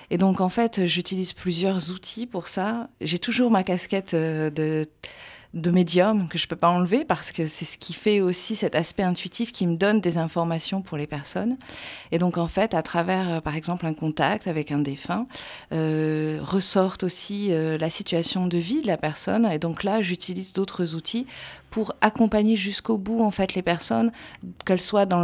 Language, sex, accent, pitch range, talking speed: French, female, French, 155-190 Hz, 195 wpm